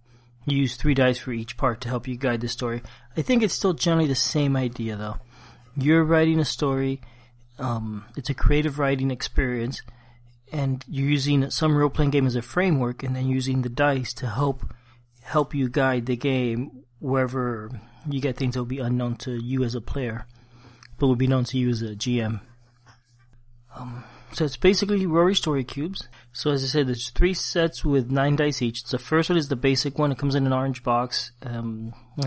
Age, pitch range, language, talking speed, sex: 30-49, 120-140 Hz, English, 200 wpm, male